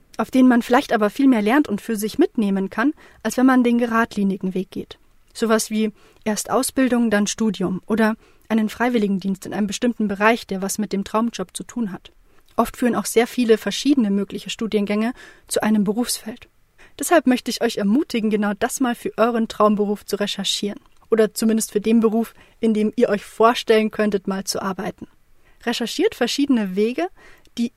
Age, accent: 30-49, German